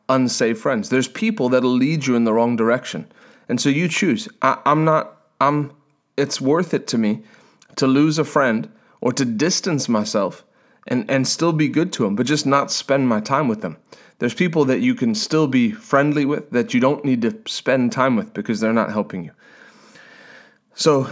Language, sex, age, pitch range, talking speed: English, male, 30-49, 115-150 Hz, 195 wpm